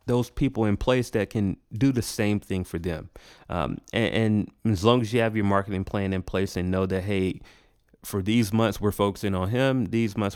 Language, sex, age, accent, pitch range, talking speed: English, male, 30-49, American, 90-110 Hz, 220 wpm